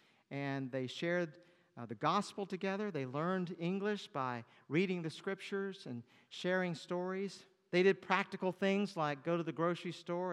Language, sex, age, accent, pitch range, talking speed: English, male, 50-69, American, 140-195 Hz, 155 wpm